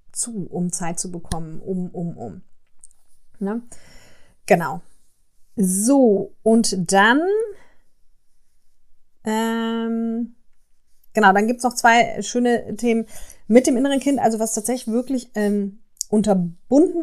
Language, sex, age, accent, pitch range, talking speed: German, female, 30-49, German, 190-240 Hz, 115 wpm